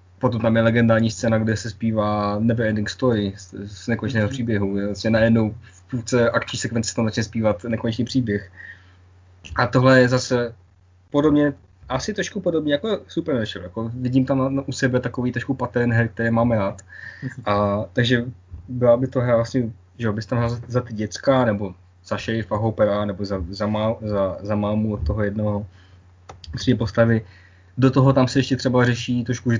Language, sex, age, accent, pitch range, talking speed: Czech, male, 20-39, native, 100-125 Hz, 180 wpm